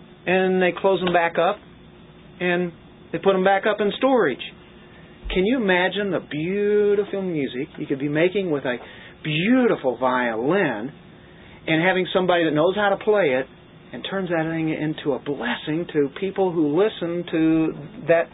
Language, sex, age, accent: English, male, 40-59, American